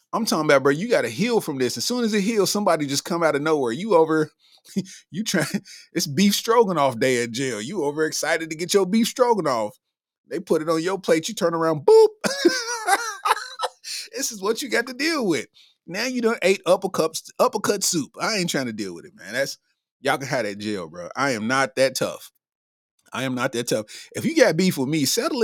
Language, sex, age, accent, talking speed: English, male, 30-49, American, 225 wpm